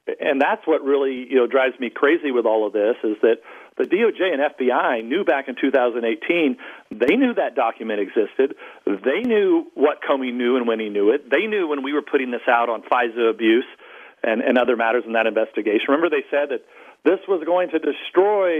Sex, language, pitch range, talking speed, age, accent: male, English, 130-190 Hz, 210 wpm, 50-69, American